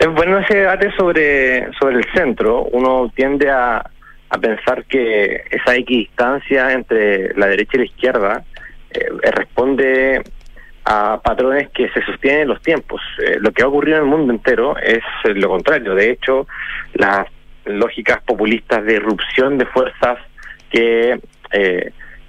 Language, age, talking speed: Spanish, 30-49, 150 wpm